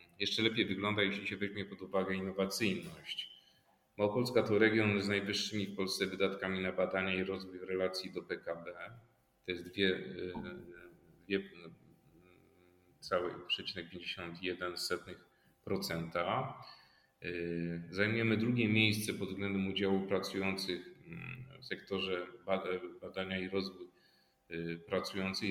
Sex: male